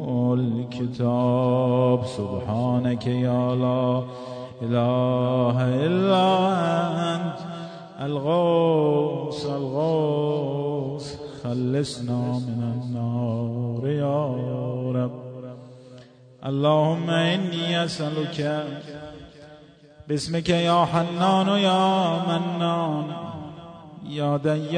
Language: Persian